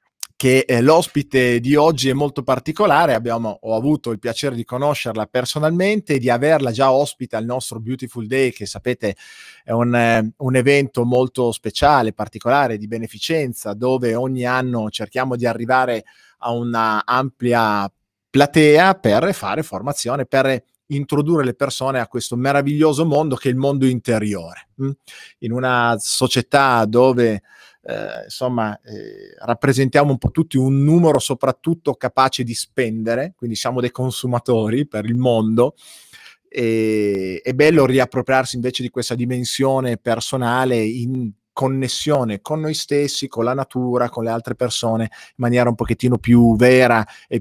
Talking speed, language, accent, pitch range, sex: 145 wpm, Italian, native, 115-135 Hz, male